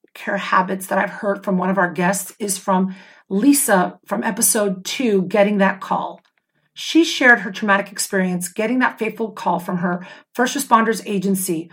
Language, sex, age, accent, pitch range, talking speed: English, female, 40-59, American, 195-250 Hz, 170 wpm